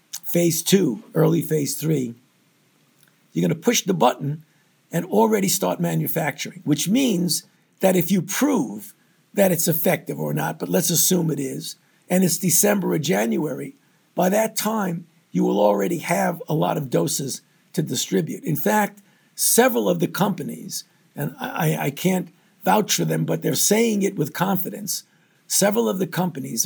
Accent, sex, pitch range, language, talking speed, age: American, male, 155-195 Hz, English, 160 wpm, 50-69